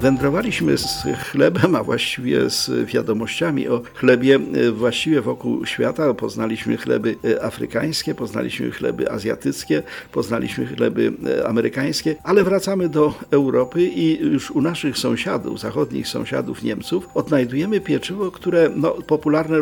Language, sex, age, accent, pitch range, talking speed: Polish, male, 50-69, native, 135-165 Hz, 115 wpm